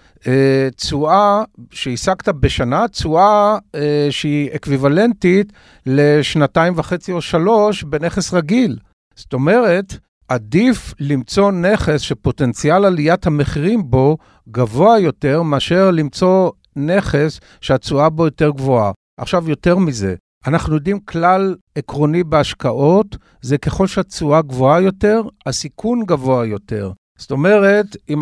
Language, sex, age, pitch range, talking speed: Hebrew, male, 50-69, 135-180 Hz, 110 wpm